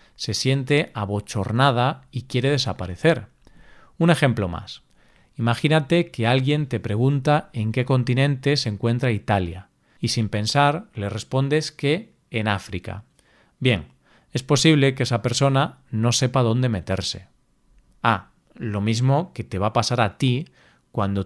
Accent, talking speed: Spanish, 140 wpm